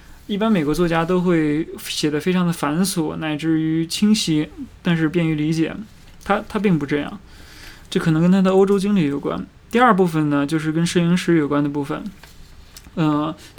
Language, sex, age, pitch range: Chinese, male, 20-39, 150-175 Hz